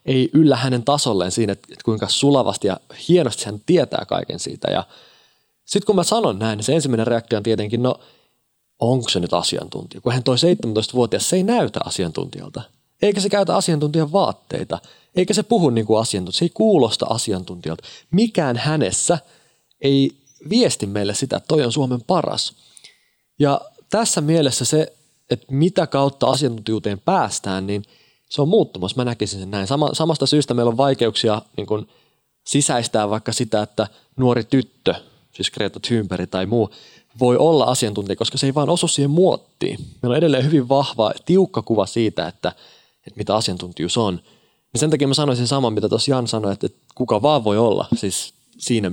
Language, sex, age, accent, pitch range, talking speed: Finnish, male, 30-49, native, 105-150 Hz, 170 wpm